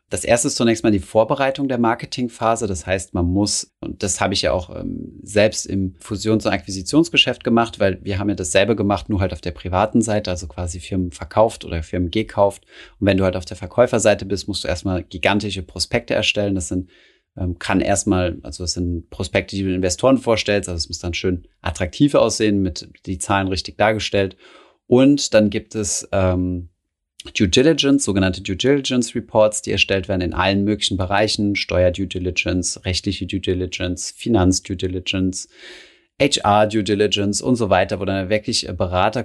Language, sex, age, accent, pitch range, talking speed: German, male, 30-49, German, 90-105 Hz, 185 wpm